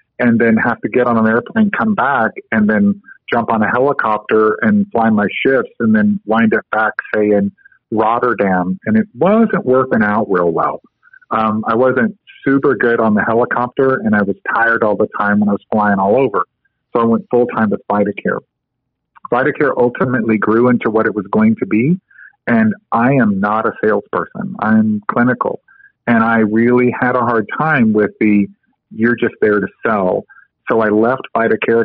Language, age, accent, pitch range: English, 40-59, American, 110-130 Hz